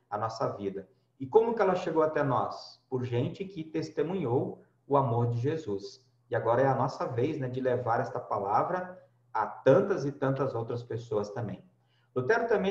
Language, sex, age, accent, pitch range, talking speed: Portuguese, male, 50-69, Brazilian, 125-185 Hz, 180 wpm